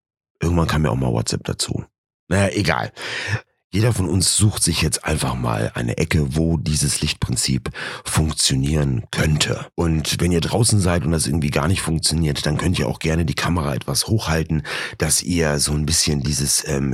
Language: German